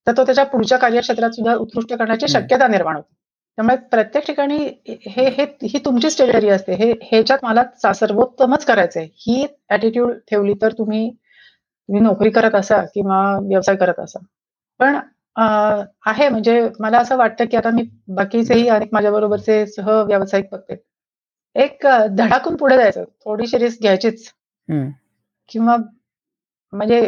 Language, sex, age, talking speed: Marathi, female, 30-49, 130 wpm